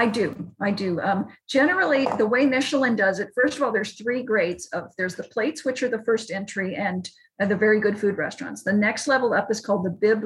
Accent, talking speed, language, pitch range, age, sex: American, 240 wpm, English, 195-235 Hz, 40-59, female